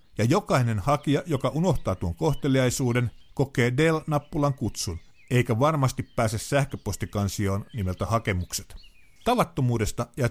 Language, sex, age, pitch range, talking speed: Finnish, male, 50-69, 105-135 Hz, 105 wpm